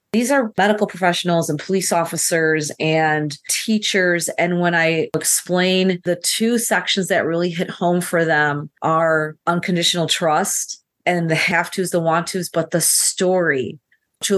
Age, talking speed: 40-59, 150 wpm